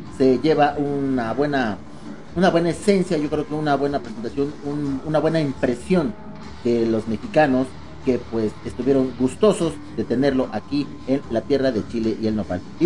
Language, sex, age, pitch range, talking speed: Spanish, male, 40-59, 125-175 Hz, 170 wpm